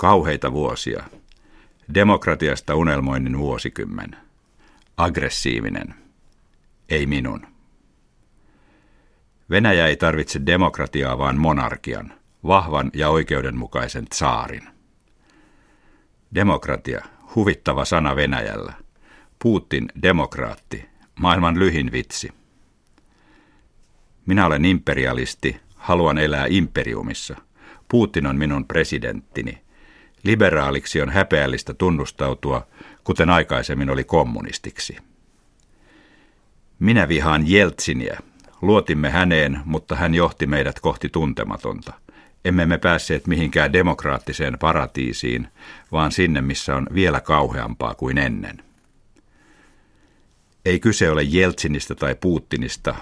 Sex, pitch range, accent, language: male, 70-90 Hz, native, Finnish